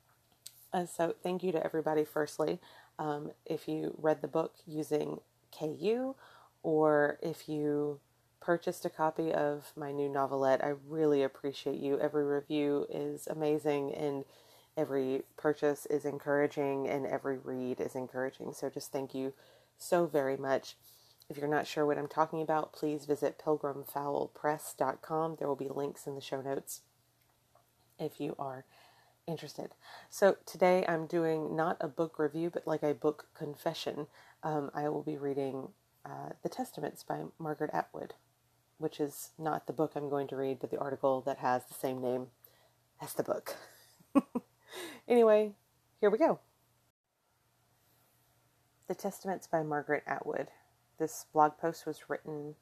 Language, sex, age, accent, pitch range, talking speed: English, female, 30-49, American, 140-160 Hz, 150 wpm